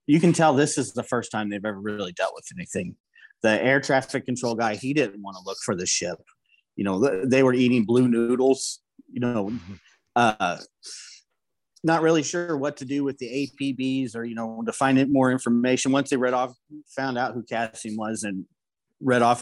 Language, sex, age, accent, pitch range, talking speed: English, male, 30-49, American, 110-130 Hz, 200 wpm